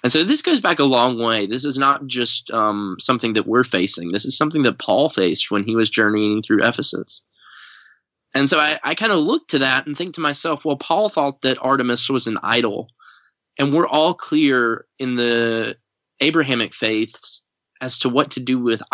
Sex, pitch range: male, 120-150 Hz